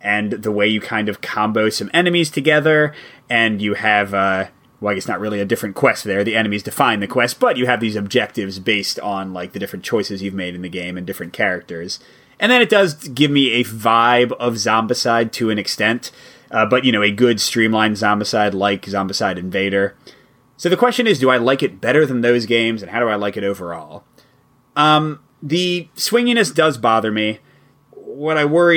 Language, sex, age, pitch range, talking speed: English, male, 30-49, 110-145 Hz, 210 wpm